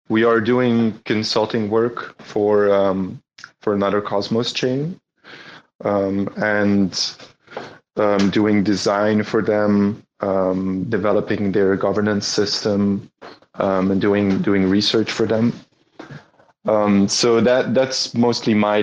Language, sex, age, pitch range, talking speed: English, male, 20-39, 100-115 Hz, 115 wpm